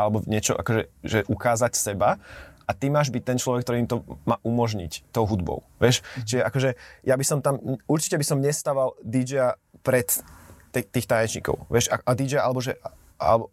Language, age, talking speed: Slovak, 20-39, 185 wpm